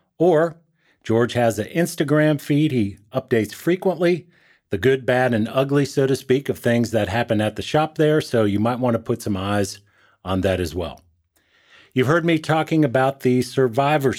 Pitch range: 105-145 Hz